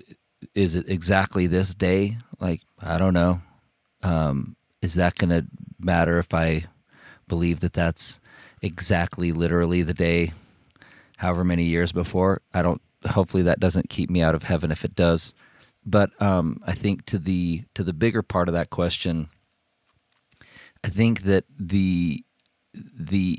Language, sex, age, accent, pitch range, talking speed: English, male, 40-59, American, 80-95 Hz, 150 wpm